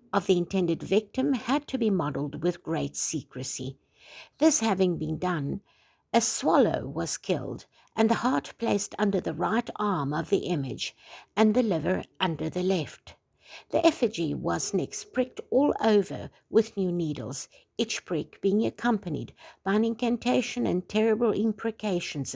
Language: English